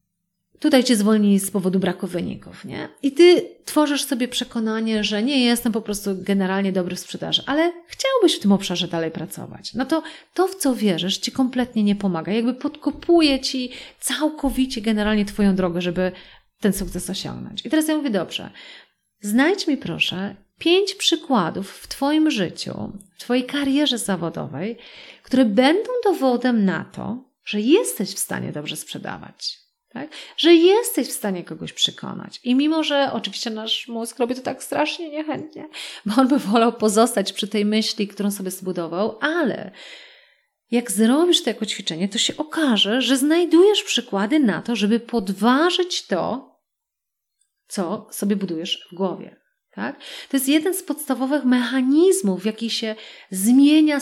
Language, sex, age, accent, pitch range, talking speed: Polish, female, 30-49, native, 200-290 Hz, 155 wpm